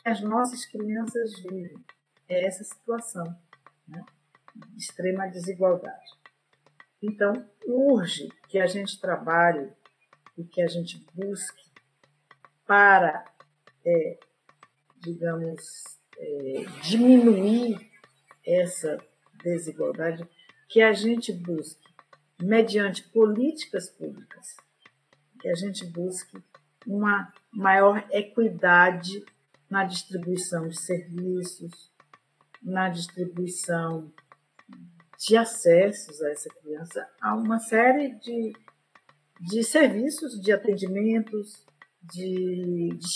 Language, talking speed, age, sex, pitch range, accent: Portuguese, 90 wpm, 50-69, female, 175-220 Hz, Brazilian